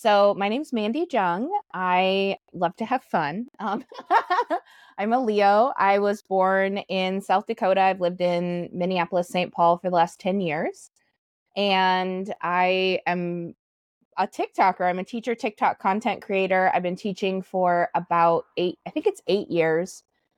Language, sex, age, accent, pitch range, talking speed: English, female, 20-39, American, 175-225 Hz, 160 wpm